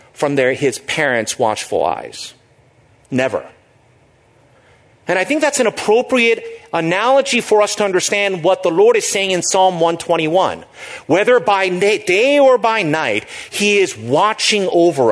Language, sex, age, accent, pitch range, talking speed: English, male, 40-59, American, 165-250 Hz, 145 wpm